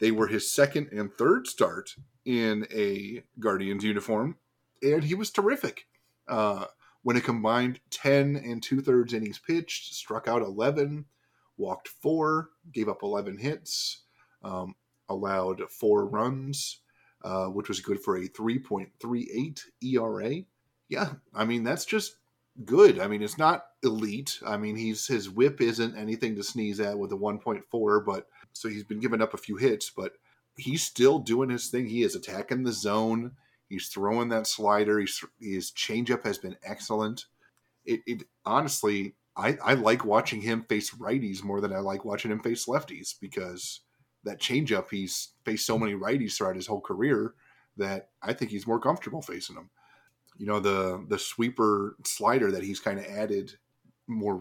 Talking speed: 165 wpm